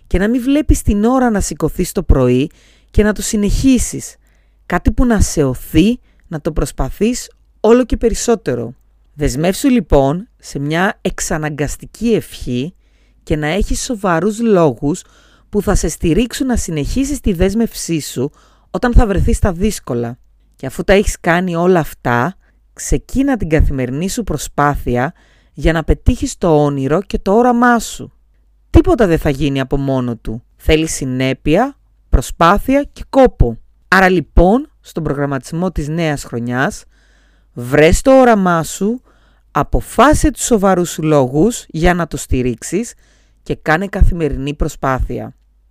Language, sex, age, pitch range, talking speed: Greek, female, 30-49, 135-210 Hz, 140 wpm